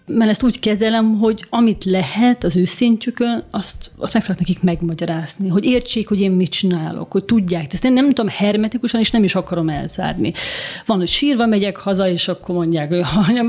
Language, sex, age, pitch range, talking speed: Hungarian, female, 30-49, 180-230 Hz, 190 wpm